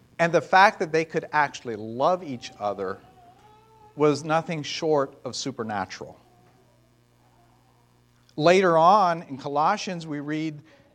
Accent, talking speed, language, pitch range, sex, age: American, 115 wpm, English, 125-165 Hz, male, 40-59